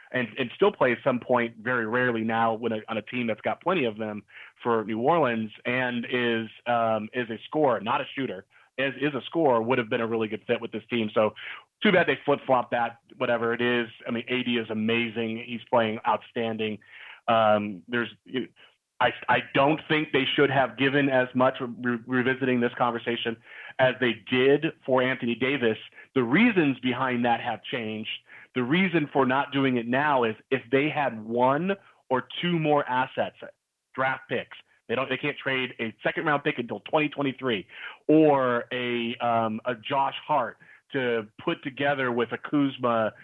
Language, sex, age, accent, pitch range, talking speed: English, male, 30-49, American, 115-135 Hz, 180 wpm